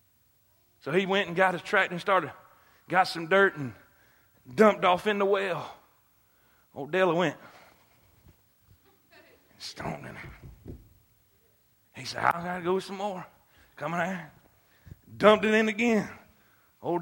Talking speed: 140 wpm